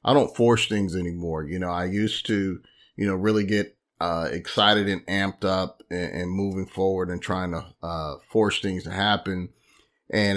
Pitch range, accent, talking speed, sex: 90-105 Hz, American, 185 wpm, male